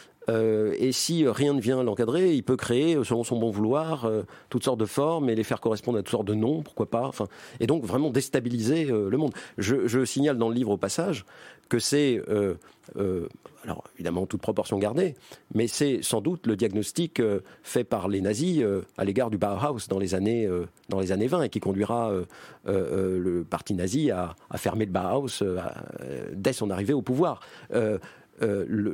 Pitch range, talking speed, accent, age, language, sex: 100-135 Hz, 215 wpm, French, 40-59, French, male